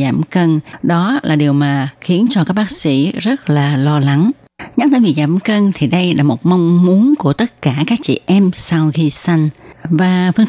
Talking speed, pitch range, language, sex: 210 wpm, 145-185 Hz, Vietnamese, female